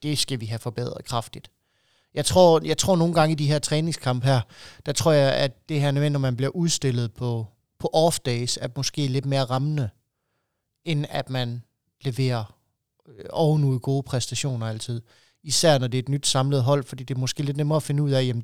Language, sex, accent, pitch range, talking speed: Danish, male, native, 125-150 Hz, 210 wpm